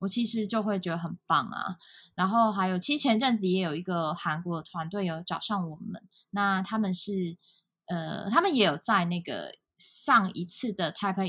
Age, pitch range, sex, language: 20-39, 170-205 Hz, female, Chinese